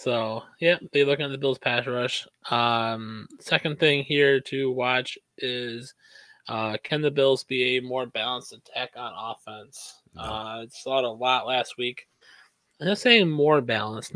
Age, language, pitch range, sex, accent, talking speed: 20-39, English, 115-140 Hz, male, American, 170 wpm